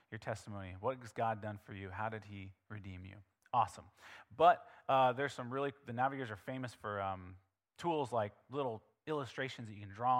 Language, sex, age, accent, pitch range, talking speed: English, male, 30-49, American, 105-130 Hz, 195 wpm